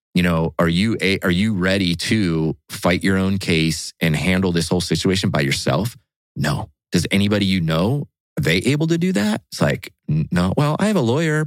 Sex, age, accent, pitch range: male, 30-49, American, 80-105 Hz